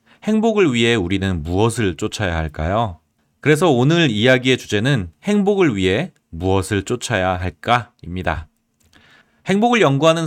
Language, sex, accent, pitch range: Korean, male, native, 95-150 Hz